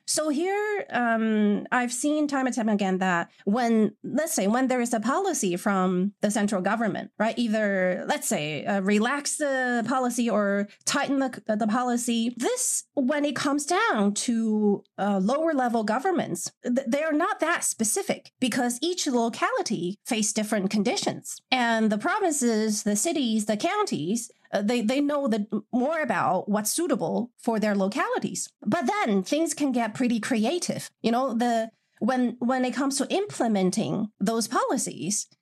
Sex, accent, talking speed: female, American, 160 wpm